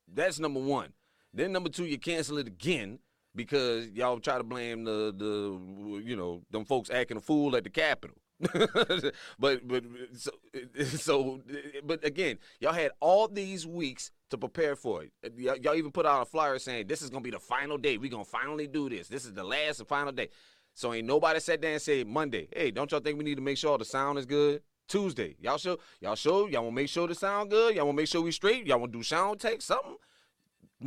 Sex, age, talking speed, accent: male, 30-49, 230 wpm, American